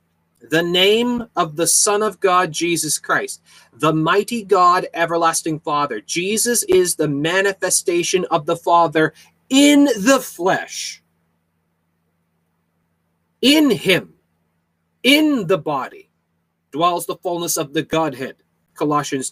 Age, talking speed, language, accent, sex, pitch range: 30-49, 110 wpm, English, American, male, 125-175 Hz